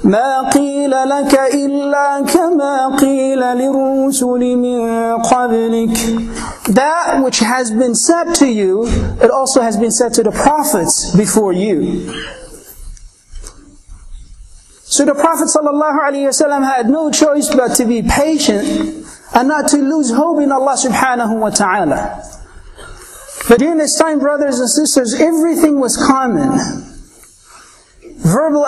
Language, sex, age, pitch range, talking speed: English, male, 40-59, 245-295 Hz, 120 wpm